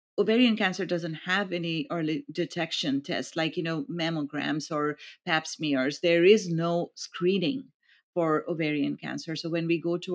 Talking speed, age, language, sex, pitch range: 160 wpm, 40-59, English, female, 155-175 Hz